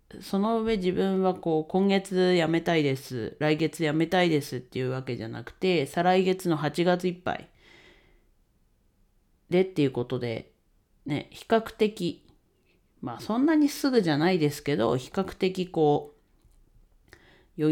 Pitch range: 125-185 Hz